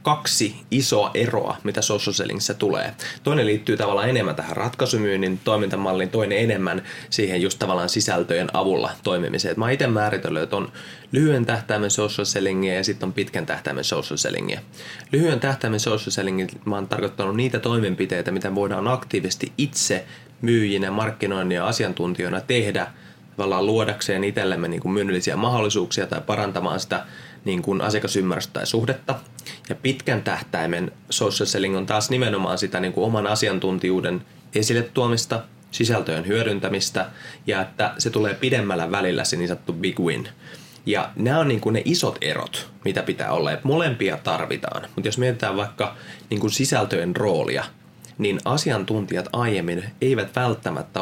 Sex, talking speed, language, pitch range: male, 140 wpm, Finnish, 95-120 Hz